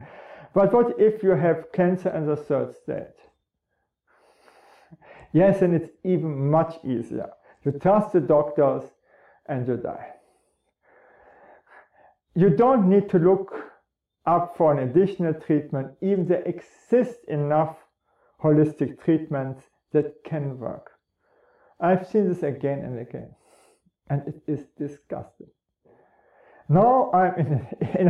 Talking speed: 120 wpm